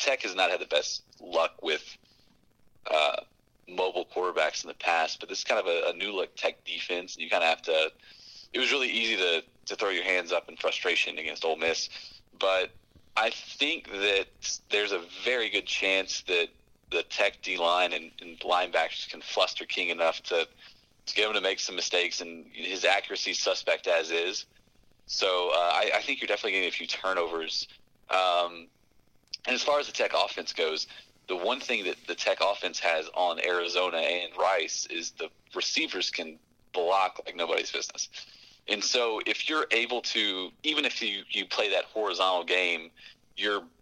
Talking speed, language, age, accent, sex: 185 wpm, English, 30-49, American, male